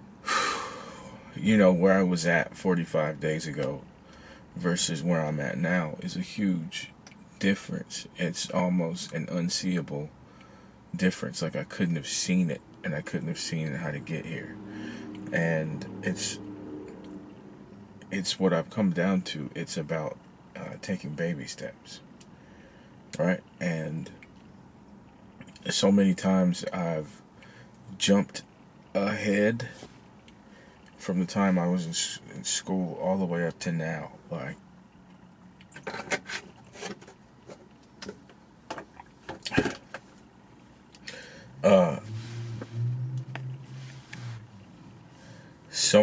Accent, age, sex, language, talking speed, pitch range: American, 40-59, male, English, 100 wpm, 85-115 Hz